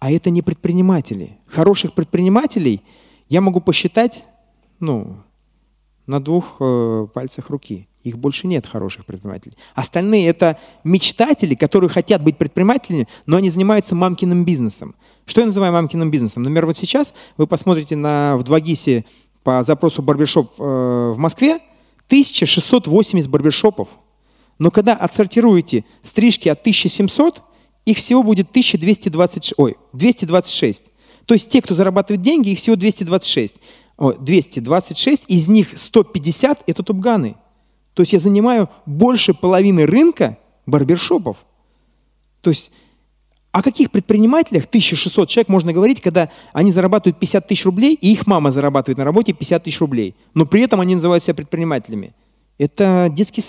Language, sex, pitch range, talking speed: Russian, male, 150-215 Hz, 135 wpm